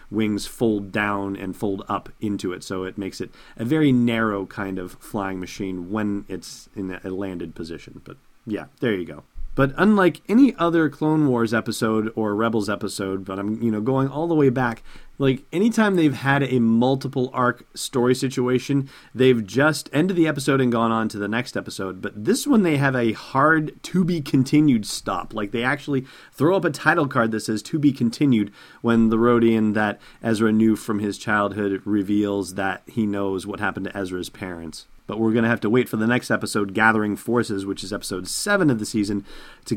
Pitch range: 100-135 Hz